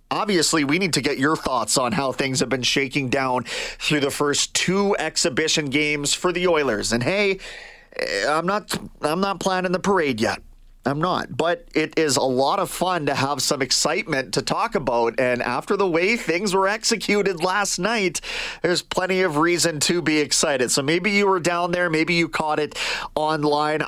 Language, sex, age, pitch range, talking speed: English, male, 30-49, 140-180 Hz, 190 wpm